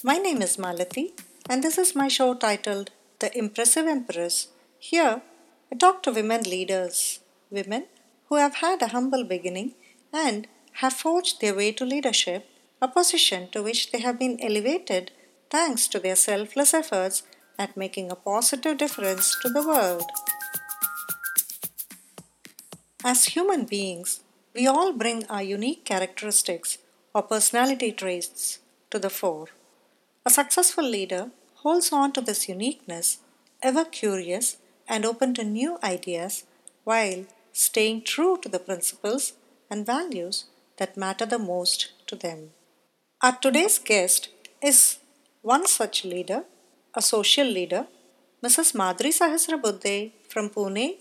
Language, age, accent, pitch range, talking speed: English, 50-69, Indian, 190-280 Hz, 135 wpm